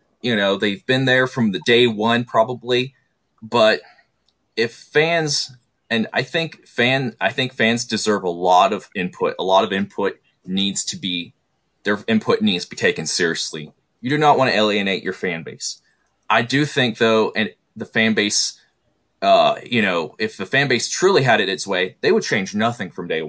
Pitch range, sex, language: 105-140 Hz, male, English